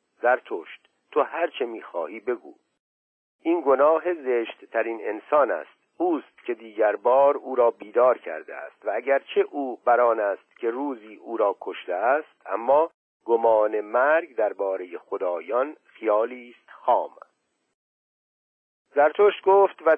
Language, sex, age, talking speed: Persian, male, 50-69, 130 wpm